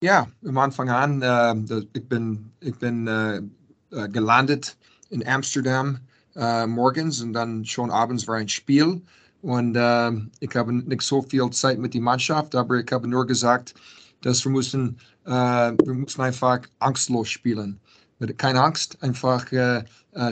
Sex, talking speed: male, 150 wpm